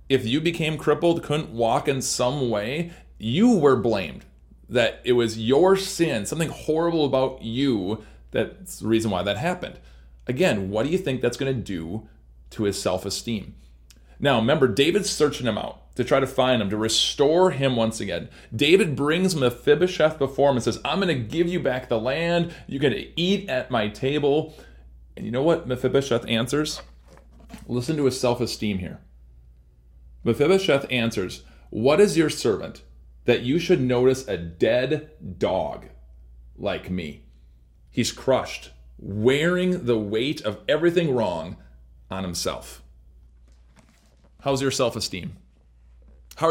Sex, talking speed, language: male, 150 wpm, English